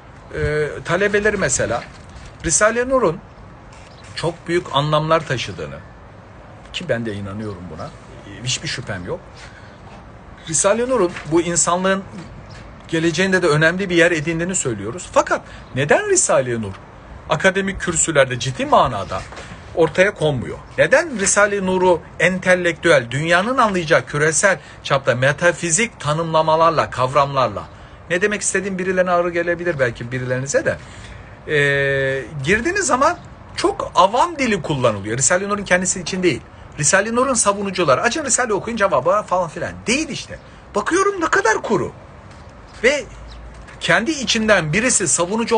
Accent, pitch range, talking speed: native, 145-210 Hz, 120 wpm